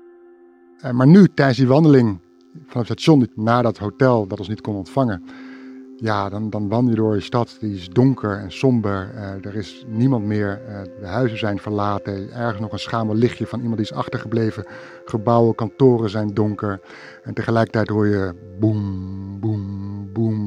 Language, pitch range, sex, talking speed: Dutch, 105-125 Hz, male, 180 wpm